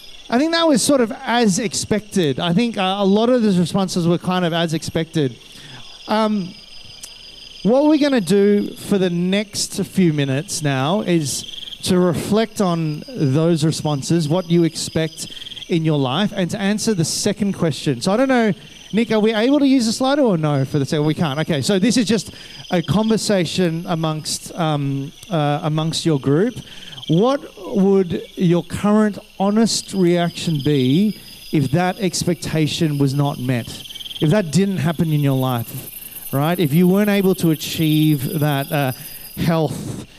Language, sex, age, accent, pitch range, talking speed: English, male, 30-49, Australian, 155-205 Hz, 165 wpm